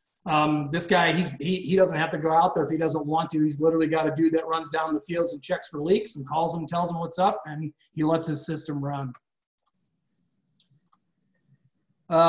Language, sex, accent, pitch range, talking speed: English, male, American, 155-175 Hz, 220 wpm